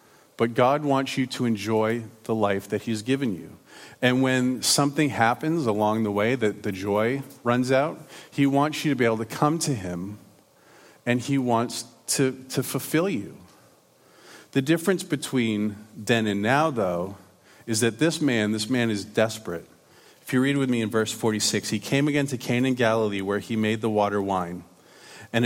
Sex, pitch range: male, 105-135 Hz